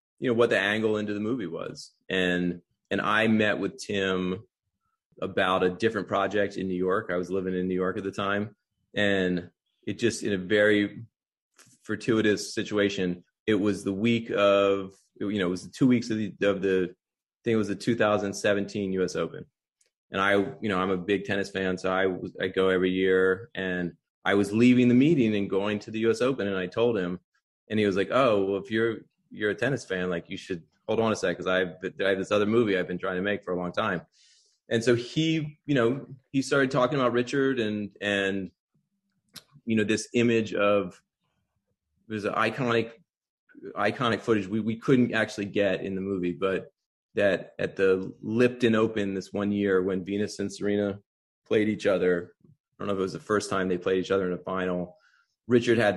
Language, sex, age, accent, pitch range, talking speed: English, male, 30-49, American, 95-110 Hz, 210 wpm